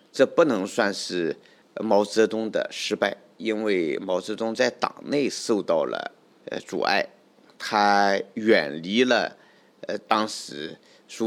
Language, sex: Chinese, male